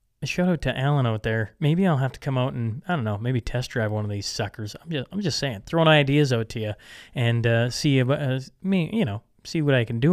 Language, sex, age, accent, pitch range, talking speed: English, male, 20-39, American, 120-160 Hz, 280 wpm